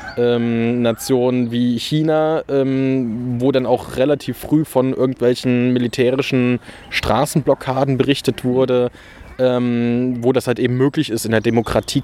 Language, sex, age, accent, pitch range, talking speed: German, male, 20-39, German, 115-135 Hz, 115 wpm